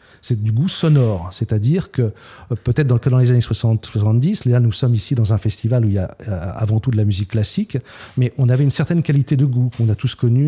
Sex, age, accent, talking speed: male, 40-59, French, 225 wpm